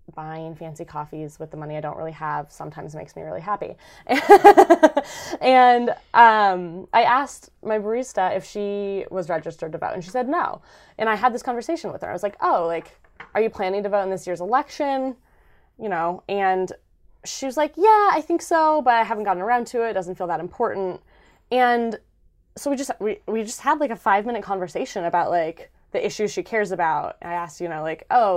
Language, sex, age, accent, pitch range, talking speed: English, female, 20-39, American, 175-220 Hz, 210 wpm